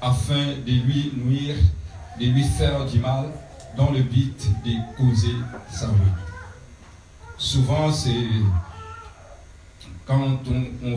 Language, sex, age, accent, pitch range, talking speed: French, male, 50-69, French, 105-135 Hz, 115 wpm